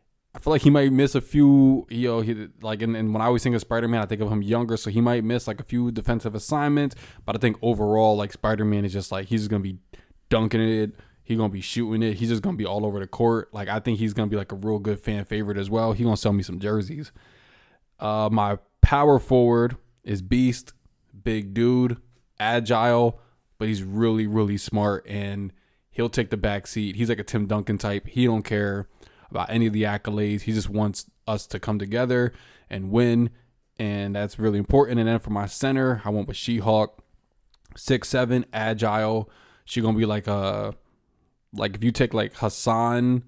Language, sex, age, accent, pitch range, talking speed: English, male, 20-39, American, 105-120 Hz, 215 wpm